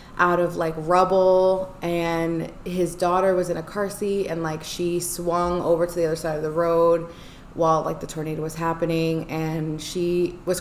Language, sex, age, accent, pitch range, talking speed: English, female, 20-39, American, 160-175 Hz, 185 wpm